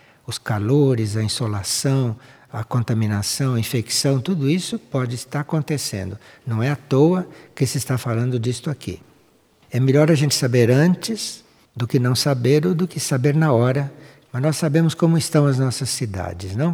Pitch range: 115-155 Hz